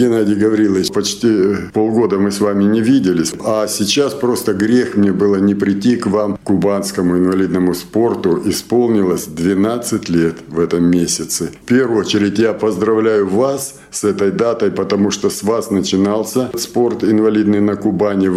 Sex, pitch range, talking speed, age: male, 100-120 Hz, 150 wpm, 50-69